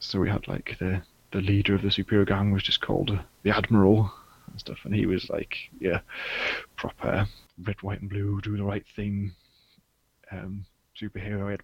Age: 20-39